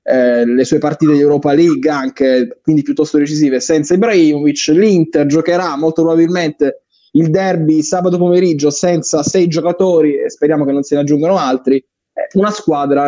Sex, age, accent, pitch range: male, 20-39, native, 150-200 Hz